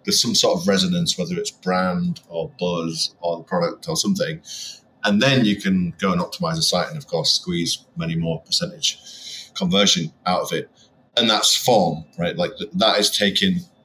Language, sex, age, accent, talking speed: English, male, 30-49, British, 185 wpm